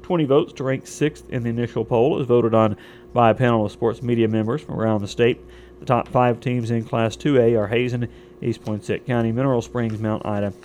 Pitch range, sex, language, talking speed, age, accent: 110-125 Hz, male, English, 220 wpm, 40-59, American